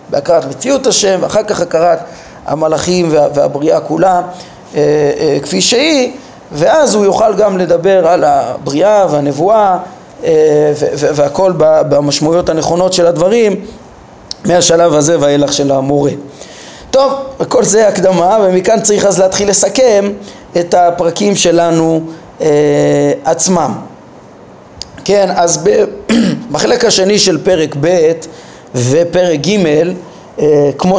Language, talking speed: Hebrew, 100 wpm